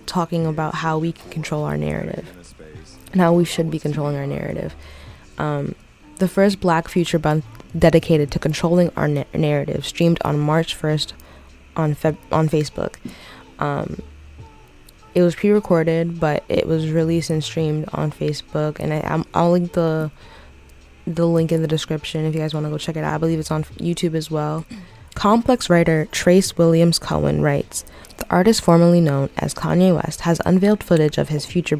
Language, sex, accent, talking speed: English, female, American, 175 wpm